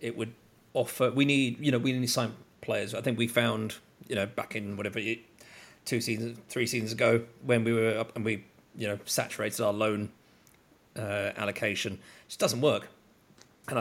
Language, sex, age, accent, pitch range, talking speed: English, male, 40-59, British, 110-125 Hz, 190 wpm